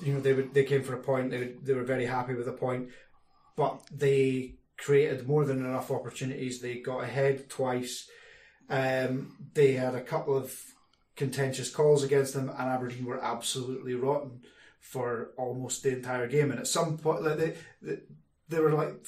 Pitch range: 125-145 Hz